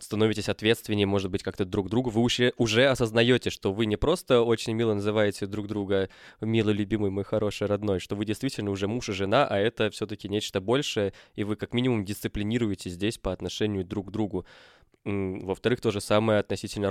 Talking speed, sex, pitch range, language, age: 190 wpm, male, 95-110 Hz, Russian, 20-39